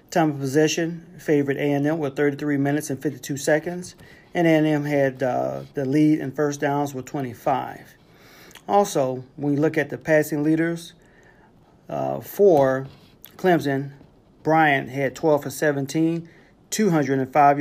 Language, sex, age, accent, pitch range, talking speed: English, male, 40-59, American, 140-165 Hz, 135 wpm